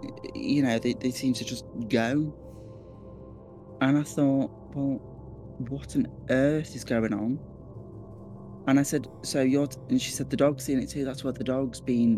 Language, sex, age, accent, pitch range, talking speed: English, male, 20-39, British, 110-130 Hz, 175 wpm